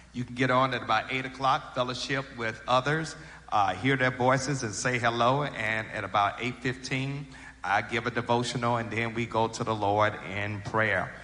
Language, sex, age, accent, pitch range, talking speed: English, male, 50-69, American, 115-140 Hz, 185 wpm